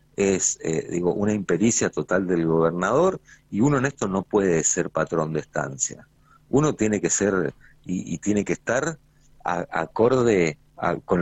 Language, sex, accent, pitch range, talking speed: Spanish, male, Argentinian, 85-105 Hz, 165 wpm